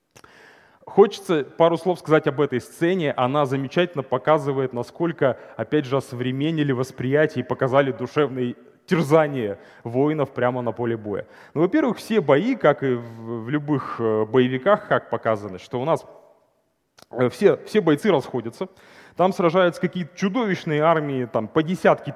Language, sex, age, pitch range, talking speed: Russian, male, 30-49, 125-155 Hz, 135 wpm